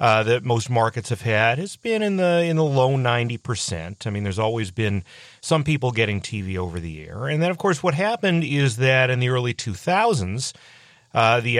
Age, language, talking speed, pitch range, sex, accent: 40-59, English, 205 wpm, 110-135 Hz, male, American